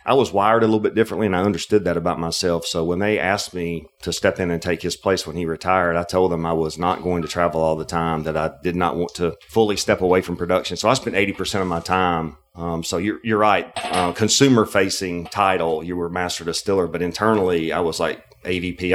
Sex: male